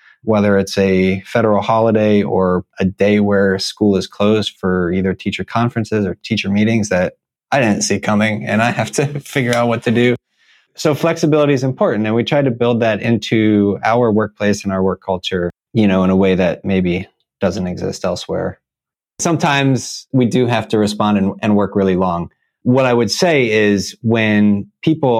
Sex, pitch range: male, 95-115 Hz